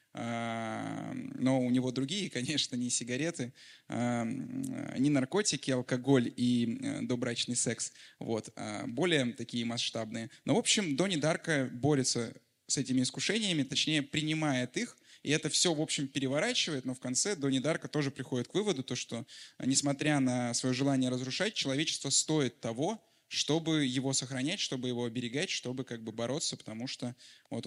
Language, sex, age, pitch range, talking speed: English, male, 20-39, 125-155 Hz, 150 wpm